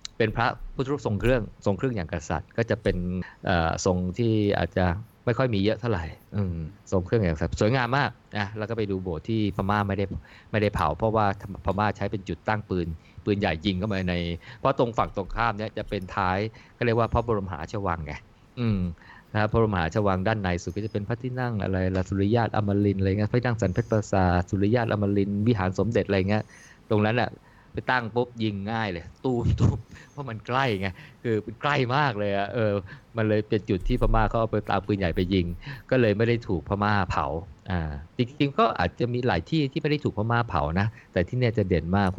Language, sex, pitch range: Thai, male, 95-115 Hz